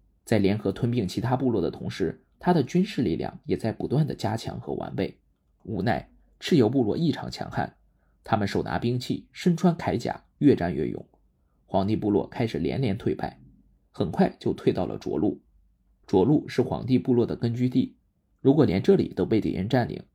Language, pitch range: Chinese, 90-135 Hz